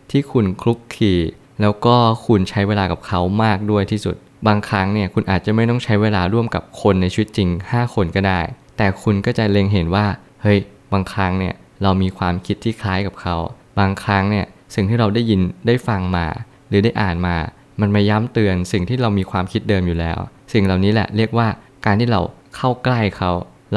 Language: Thai